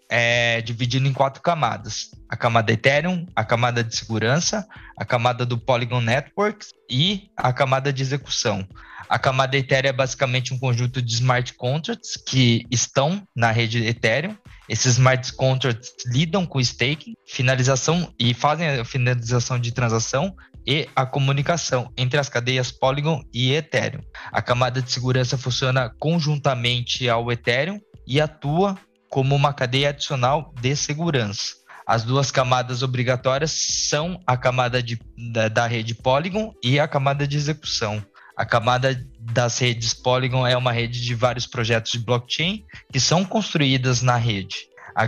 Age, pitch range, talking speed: 20-39, 120-140 Hz, 145 wpm